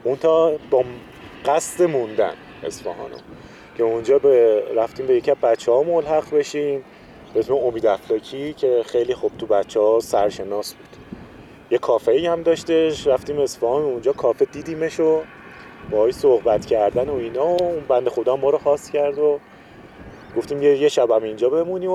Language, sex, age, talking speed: Persian, male, 30-49, 155 wpm